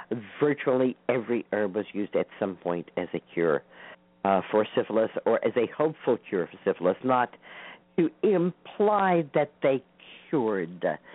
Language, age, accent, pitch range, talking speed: English, 50-69, American, 105-145 Hz, 145 wpm